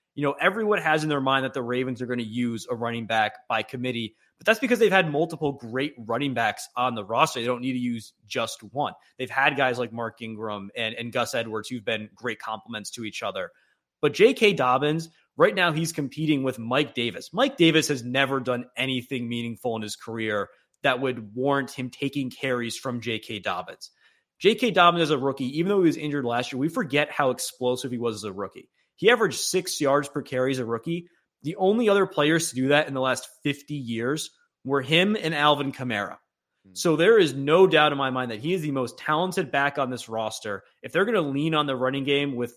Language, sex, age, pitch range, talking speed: English, male, 20-39, 125-150 Hz, 225 wpm